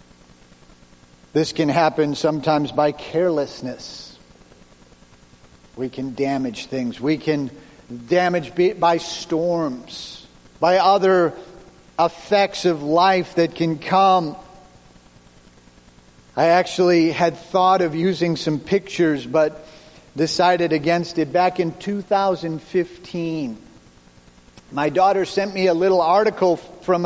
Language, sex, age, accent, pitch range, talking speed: English, male, 50-69, American, 125-185 Hz, 100 wpm